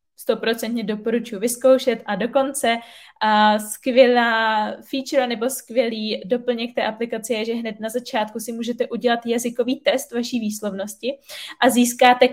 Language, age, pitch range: Czech, 20-39, 225-260 Hz